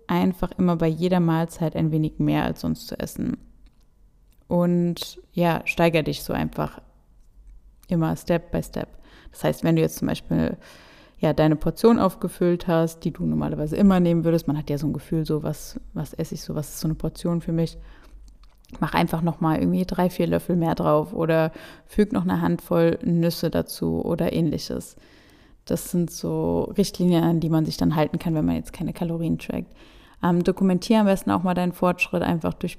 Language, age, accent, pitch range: German, 20-39, German, 155-190 Hz